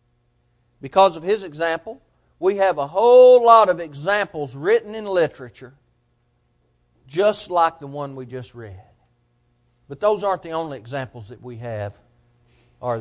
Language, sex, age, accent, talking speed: English, male, 40-59, American, 145 wpm